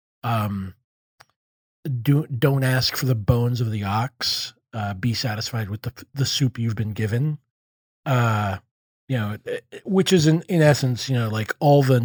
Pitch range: 105-130 Hz